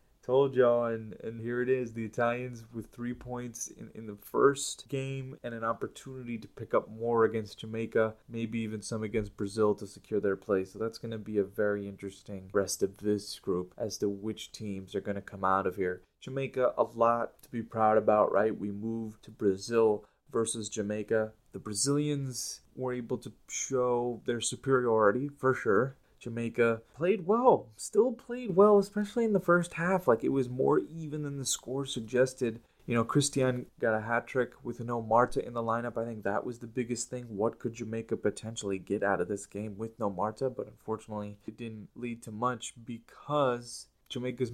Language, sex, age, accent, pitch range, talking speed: English, male, 30-49, American, 110-130 Hz, 195 wpm